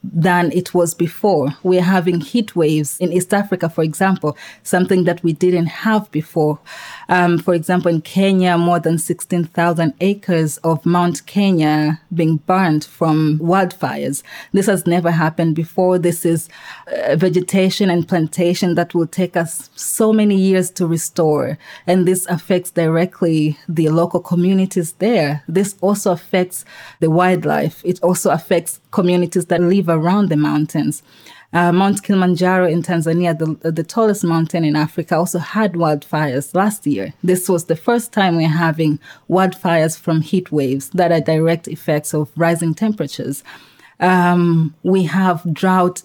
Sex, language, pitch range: female, German, 160-185 Hz